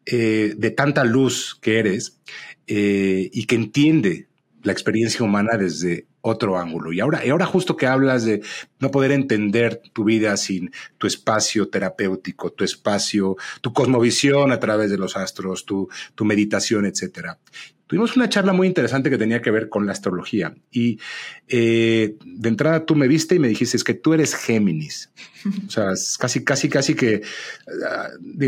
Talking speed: 170 wpm